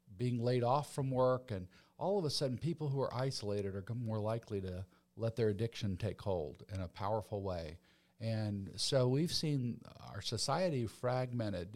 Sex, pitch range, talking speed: male, 105-130 Hz, 175 wpm